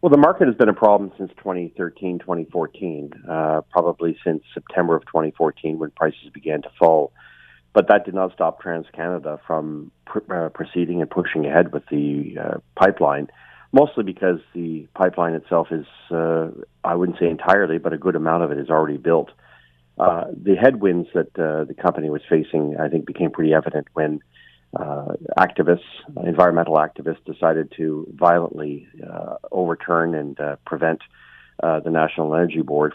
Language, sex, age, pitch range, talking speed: English, male, 40-59, 75-85 Hz, 160 wpm